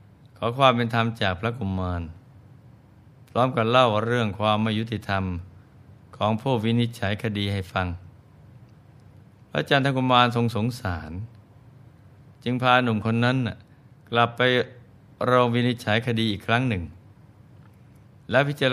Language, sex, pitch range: Thai, male, 105-125 Hz